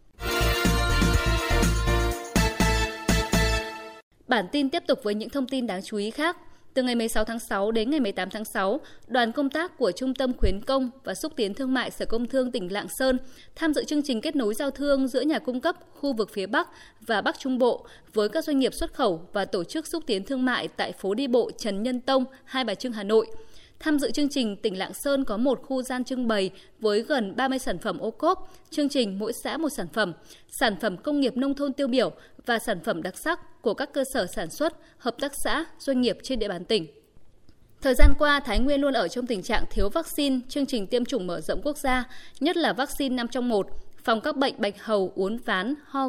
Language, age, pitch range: Vietnamese, 20-39, 210-280 Hz